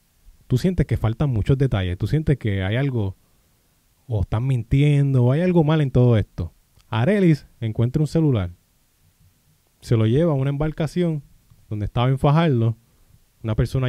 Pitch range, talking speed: 110-155 Hz, 155 wpm